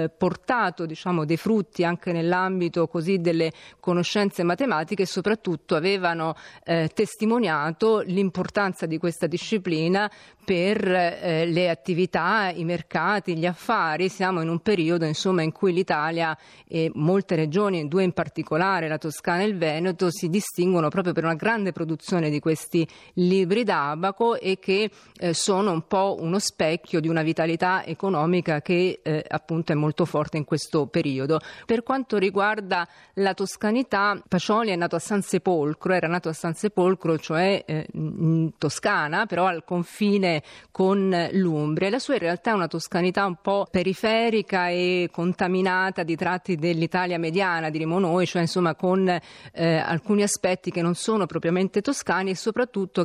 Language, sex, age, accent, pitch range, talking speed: Italian, female, 30-49, native, 165-195 Hz, 150 wpm